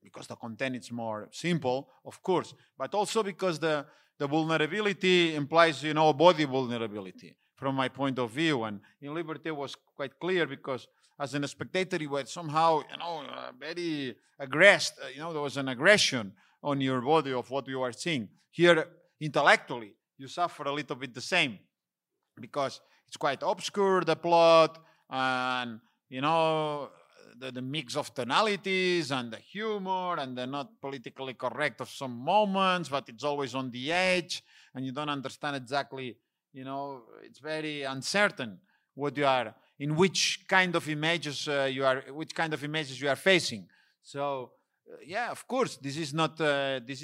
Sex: male